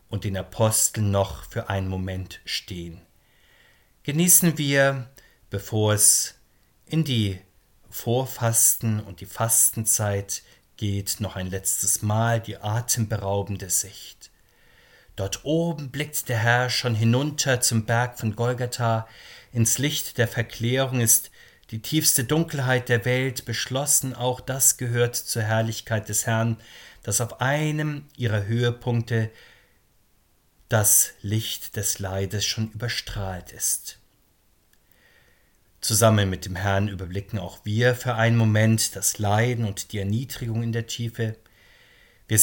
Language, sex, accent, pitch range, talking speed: German, male, German, 100-125 Hz, 120 wpm